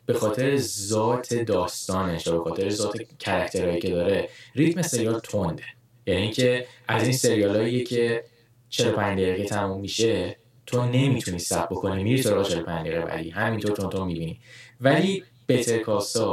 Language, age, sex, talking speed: Persian, 10-29, male, 140 wpm